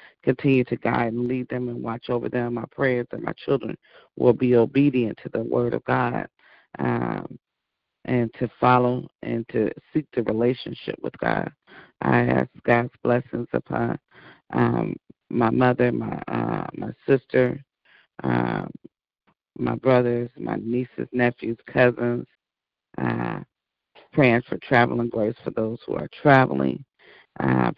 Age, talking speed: 40-59, 140 wpm